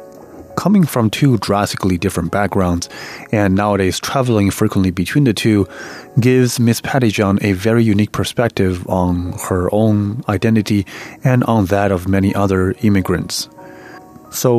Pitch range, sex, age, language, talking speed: 95-120 Hz, male, 30-49, German, 135 wpm